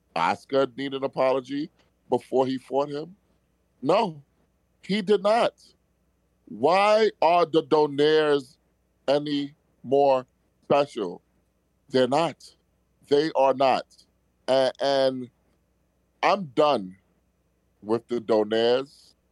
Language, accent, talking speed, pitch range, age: English, American, 95 wpm, 105-145 Hz, 30-49